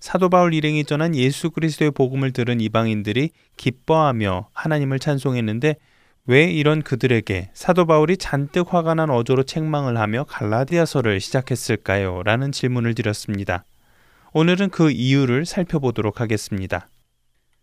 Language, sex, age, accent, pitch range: Korean, male, 20-39, native, 110-155 Hz